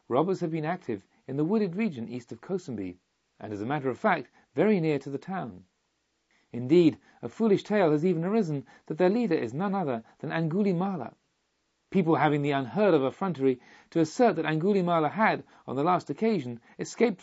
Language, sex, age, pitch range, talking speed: English, male, 40-59, 125-180 Hz, 185 wpm